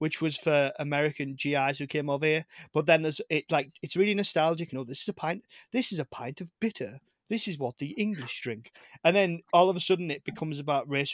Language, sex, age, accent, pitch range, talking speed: English, male, 20-39, British, 140-175 Hz, 240 wpm